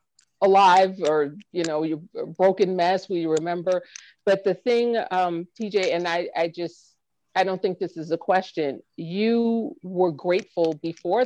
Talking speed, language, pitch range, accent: 165 wpm, English, 170-210 Hz, American